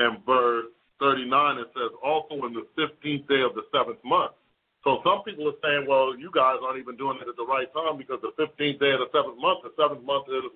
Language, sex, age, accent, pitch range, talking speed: English, male, 40-59, American, 125-150 Hz, 240 wpm